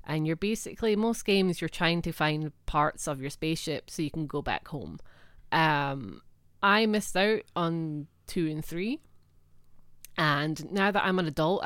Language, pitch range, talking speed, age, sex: English, 150-185 Hz, 170 wpm, 20-39, female